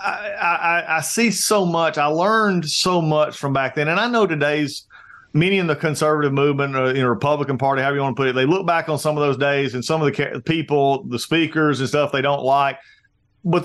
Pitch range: 140-180 Hz